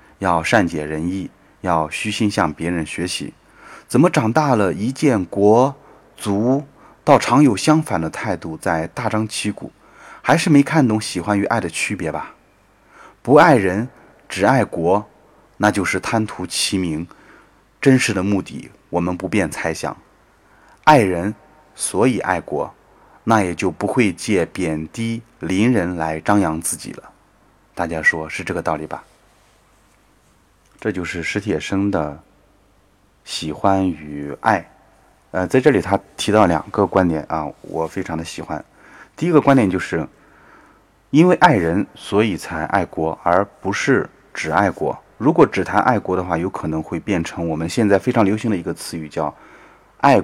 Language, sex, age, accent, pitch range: Chinese, male, 20-39, native, 80-110 Hz